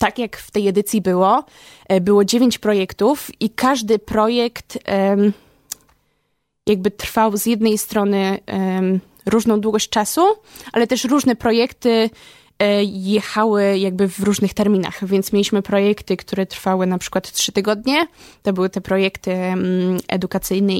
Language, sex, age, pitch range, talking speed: Polish, female, 20-39, 190-215 Hz, 125 wpm